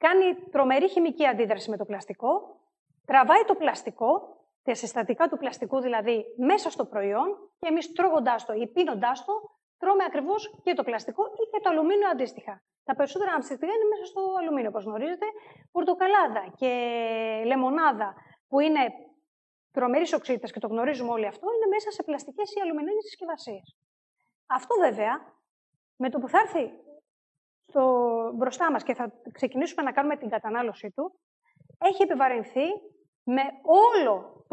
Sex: female